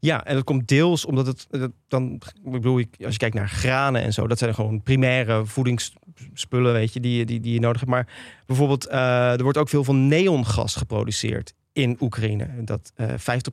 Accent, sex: Dutch, male